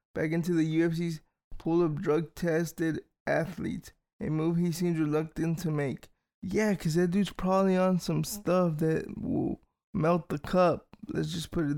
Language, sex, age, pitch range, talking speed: English, male, 20-39, 160-175 Hz, 165 wpm